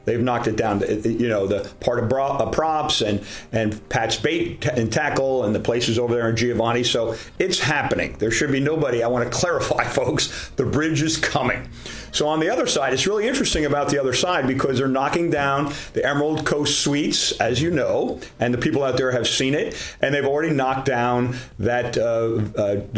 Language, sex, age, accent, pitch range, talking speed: English, male, 40-59, American, 120-155 Hz, 200 wpm